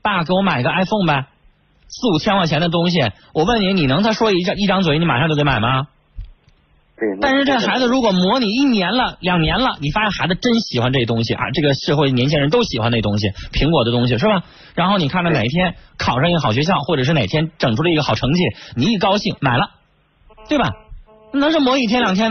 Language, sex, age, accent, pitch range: Chinese, male, 30-49, native, 145-220 Hz